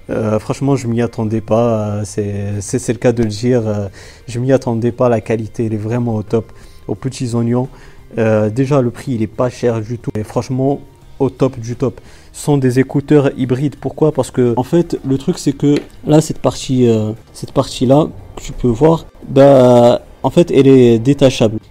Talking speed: 200 wpm